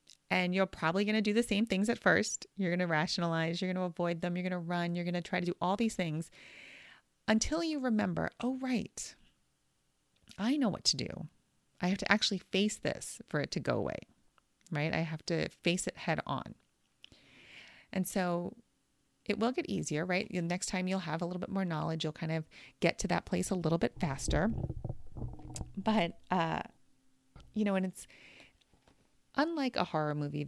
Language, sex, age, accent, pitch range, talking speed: English, female, 30-49, American, 165-220 Hz, 195 wpm